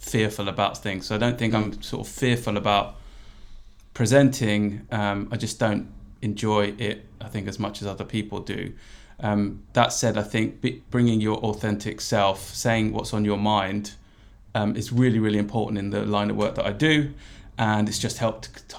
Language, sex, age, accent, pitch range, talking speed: English, male, 20-39, British, 100-115 Hz, 190 wpm